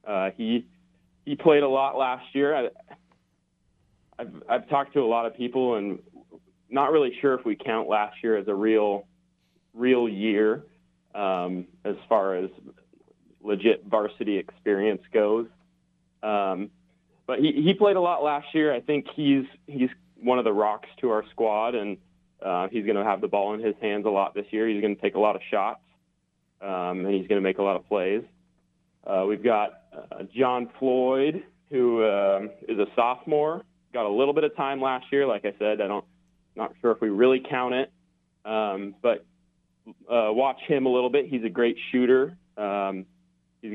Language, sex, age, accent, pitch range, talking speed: English, male, 30-49, American, 95-135 Hz, 190 wpm